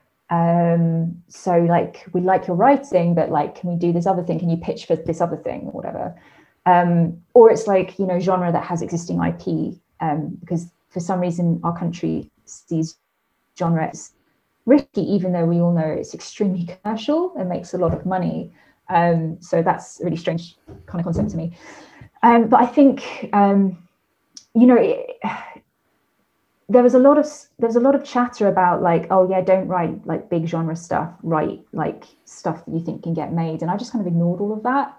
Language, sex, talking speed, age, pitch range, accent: English, female, 195 wpm, 20-39, 170-200 Hz, British